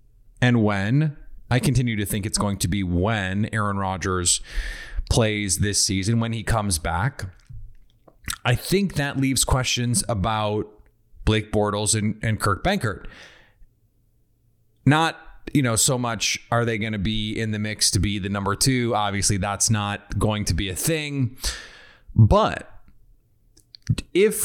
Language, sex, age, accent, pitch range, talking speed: English, male, 30-49, American, 105-125 Hz, 145 wpm